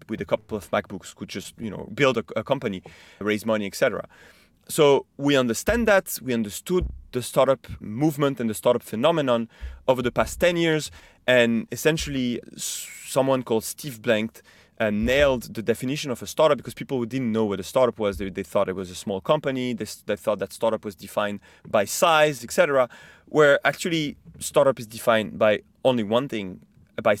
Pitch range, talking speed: 110-140 Hz, 180 wpm